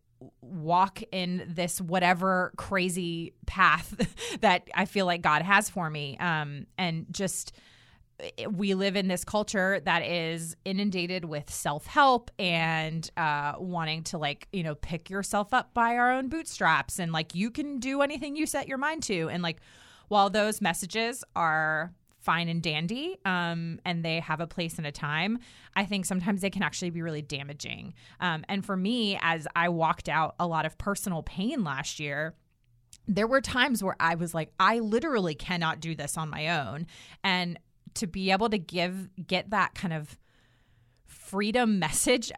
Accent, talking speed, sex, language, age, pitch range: American, 170 wpm, female, English, 30-49, 160-205 Hz